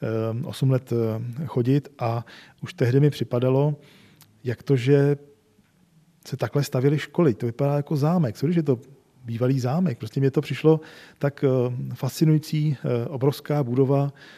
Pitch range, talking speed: 120-145 Hz, 135 wpm